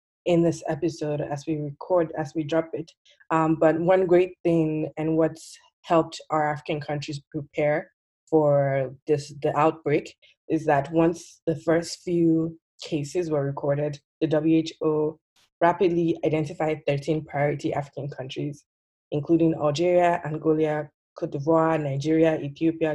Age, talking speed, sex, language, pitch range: 20-39, 130 wpm, female, English, 145-160 Hz